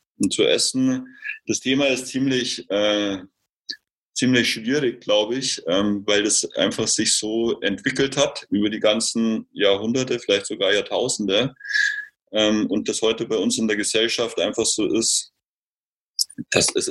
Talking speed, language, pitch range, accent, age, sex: 145 wpm, German, 110-145 Hz, German, 30-49, male